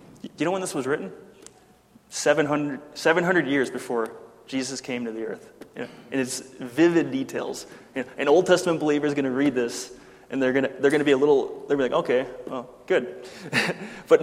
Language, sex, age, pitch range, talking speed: English, male, 20-39, 130-160 Hz, 210 wpm